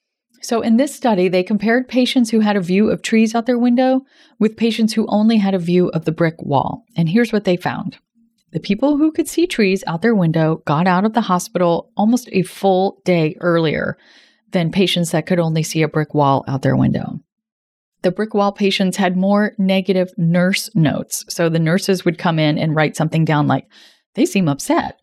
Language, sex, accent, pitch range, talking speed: English, female, American, 165-220 Hz, 205 wpm